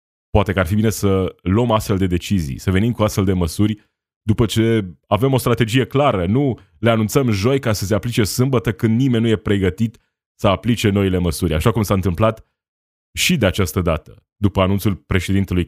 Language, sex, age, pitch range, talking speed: Romanian, male, 20-39, 90-115 Hz, 195 wpm